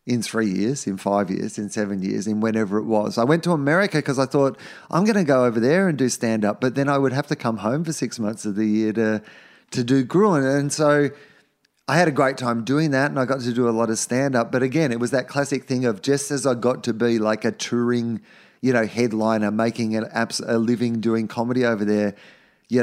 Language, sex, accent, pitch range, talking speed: English, male, Australian, 105-135 Hz, 245 wpm